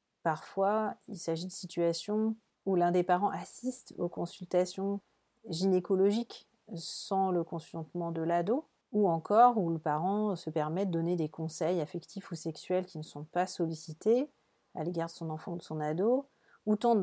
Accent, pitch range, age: French, 165-205 Hz, 40-59